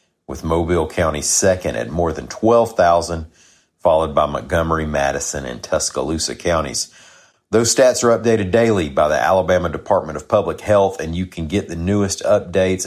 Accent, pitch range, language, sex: American, 80-100 Hz, English, male